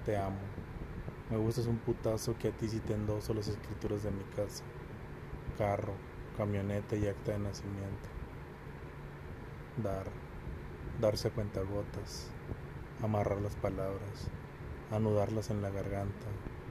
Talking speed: 120 wpm